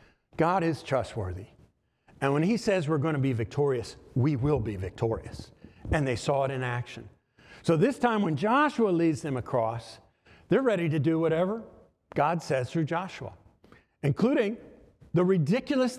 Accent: American